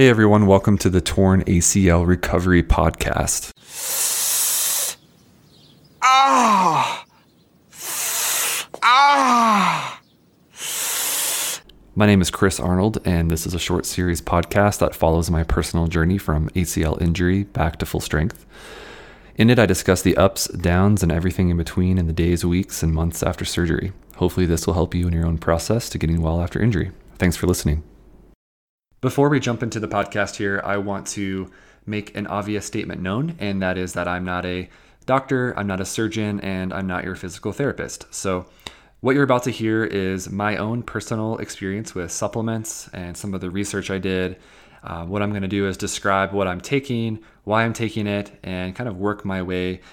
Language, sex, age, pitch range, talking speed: English, male, 30-49, 90-105 Hz, 170 wpm